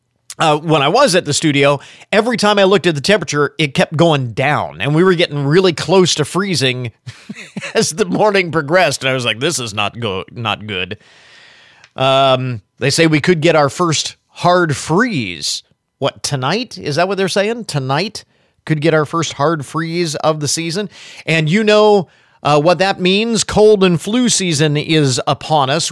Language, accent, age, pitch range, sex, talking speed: English, American, 40-59, 135-175 Hz, male, 190 wpm